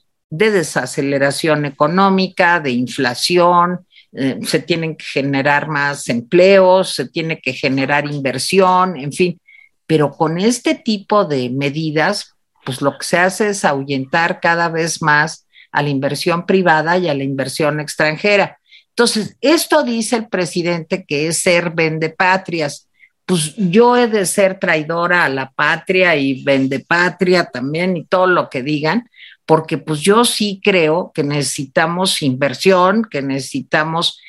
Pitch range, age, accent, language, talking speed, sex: 150-200 Hz, 50-69, Mexican, Spanish, 140 wpm, female